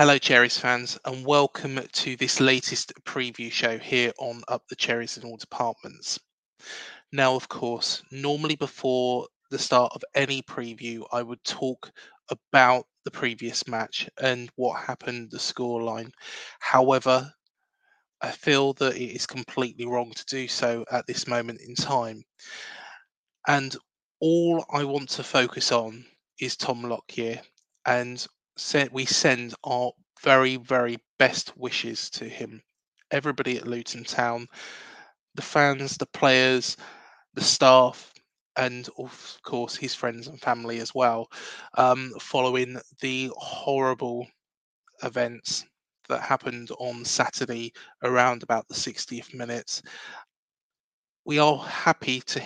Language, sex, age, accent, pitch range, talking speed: English, male, 20-39, British, 120-135 Hz, 130 wpm